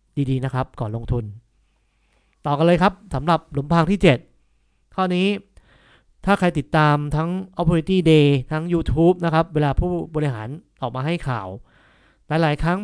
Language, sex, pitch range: Thai, male, 135-170 Hz